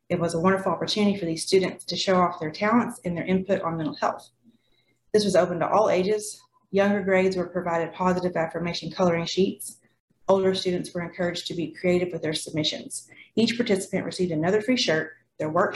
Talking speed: 195 wpm